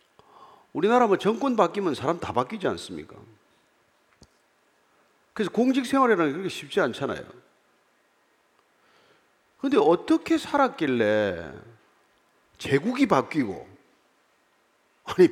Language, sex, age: Korean, male, 40-59